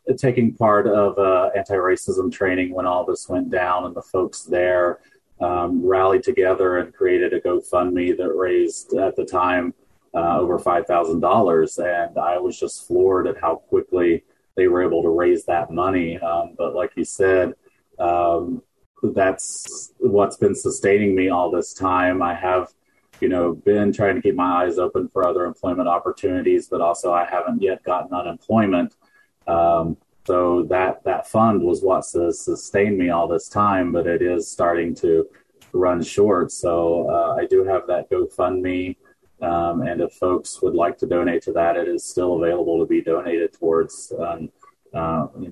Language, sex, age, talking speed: English, male, 30-49, 170 wpm